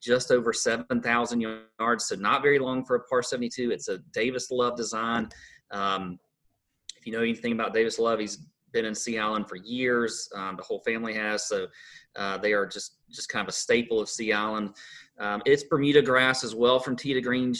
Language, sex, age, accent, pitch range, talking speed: English, male, 30-49, American, 115-170 Hz, 200 wpm